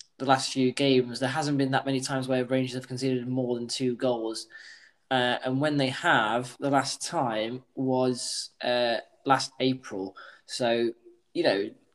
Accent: British